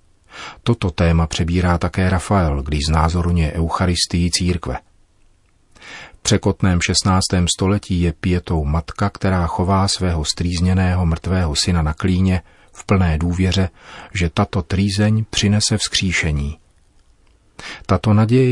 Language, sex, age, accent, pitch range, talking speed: Czech, male, 40-59, native, 85-100 Hz, 105 wpm